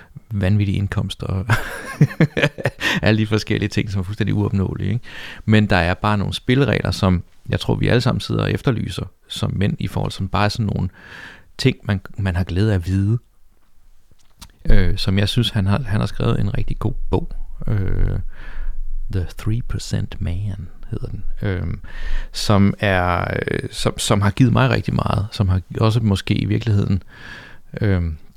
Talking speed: 170 wpm